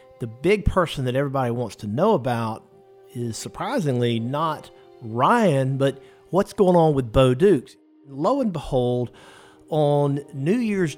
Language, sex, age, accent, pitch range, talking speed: English, male, 50-69, American, 125-155 Hz, 140 wpm